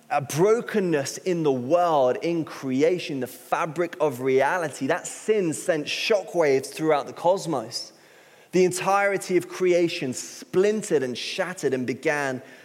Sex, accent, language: male, British, English